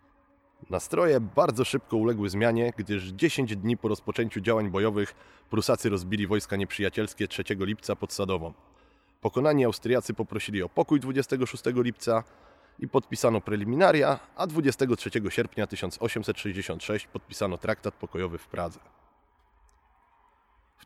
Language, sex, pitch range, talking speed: Polish, male, 95-115 Hz, 115 wpm